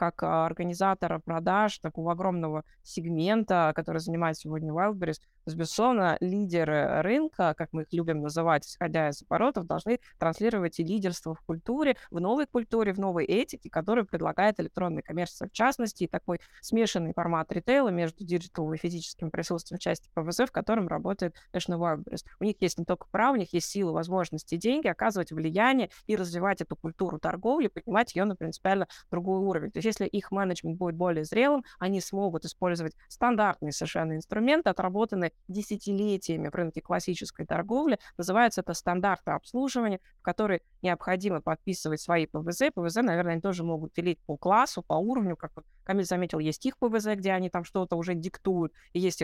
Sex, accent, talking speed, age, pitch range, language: female, native, 165 wpm, 20-39, 165-205 Hz, Russian